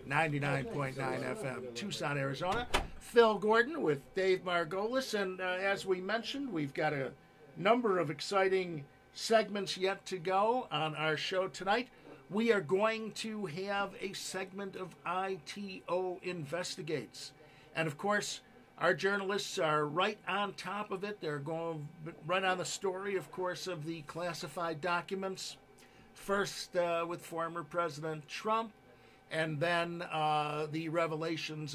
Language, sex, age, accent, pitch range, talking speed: English, male, 50-69, American, 150-190 Hz, 135 wpm